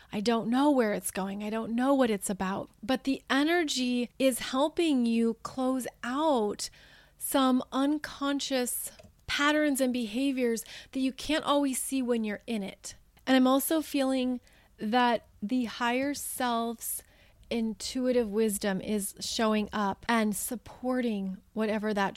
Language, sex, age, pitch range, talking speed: English, female, 30-49, 210-265 Hz, 140 wpm